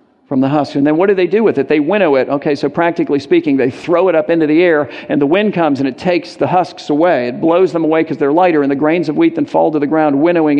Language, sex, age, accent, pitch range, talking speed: English, male, 50-69, American, 145-180 Hz, 300 wpm